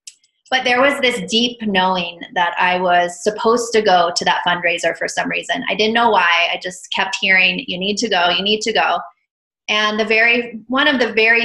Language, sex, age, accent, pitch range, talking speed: English, female, 20-39, American, 180-215 Hz, 215 wpm